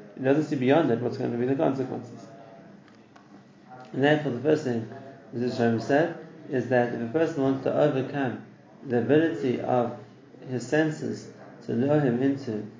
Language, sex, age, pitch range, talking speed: English, male, 30-49, 120-150 Hz, 170 wpm